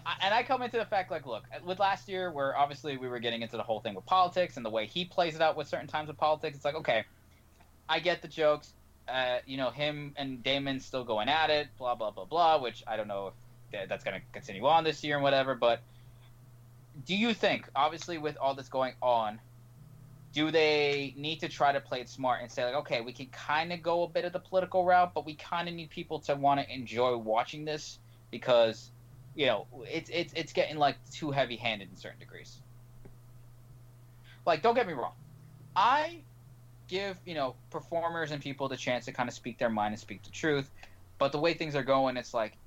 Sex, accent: male, American